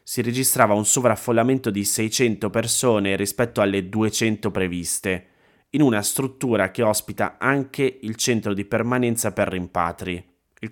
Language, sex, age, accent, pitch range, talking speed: Italian, male, 20-39, native, 95-115 Hz, 135 wpm